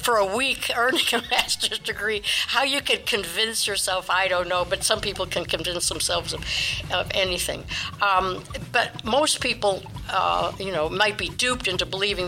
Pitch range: 175-220 Hz